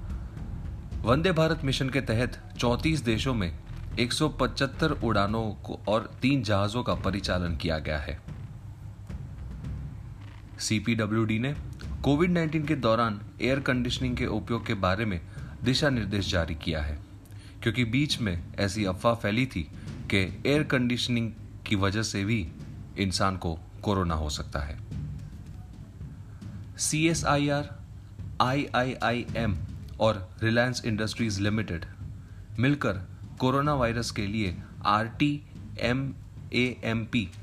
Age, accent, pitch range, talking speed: 30-49, Indian, 95-120 Hz, 110 wpm